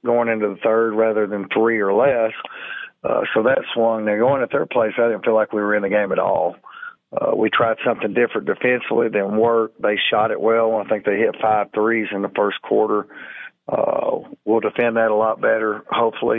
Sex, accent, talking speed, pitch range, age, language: male, American, 215 wpm, 110-120 Hz, 40-59, English